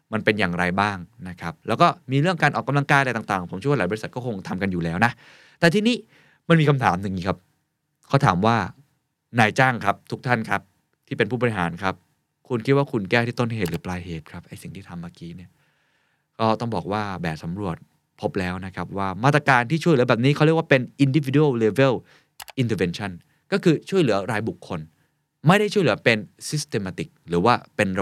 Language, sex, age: Thai, male, 20-39